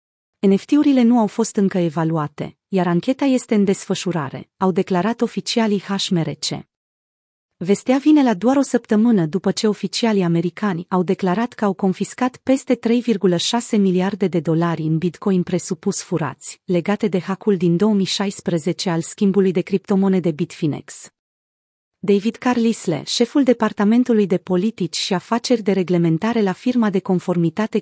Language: Romanian